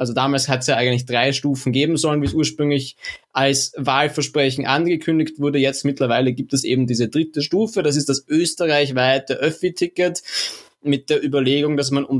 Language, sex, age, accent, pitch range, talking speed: German, male, 20-39, German, 125-150 Hz, 175 wpm